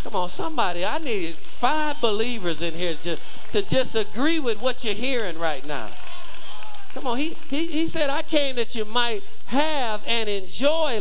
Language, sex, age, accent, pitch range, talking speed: English, male, 50-69, American, 210-295 Hz, 175 wpm